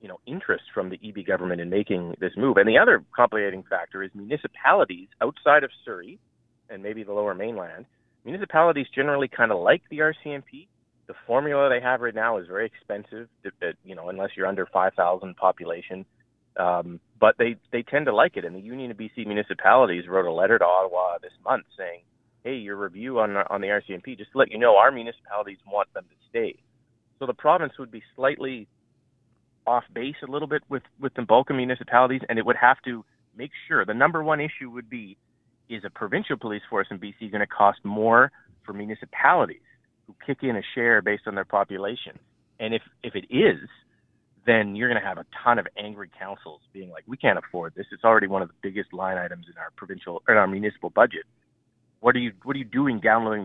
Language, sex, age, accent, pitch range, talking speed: English, male, 30-49, American, 100-130 Hz, 210 wpm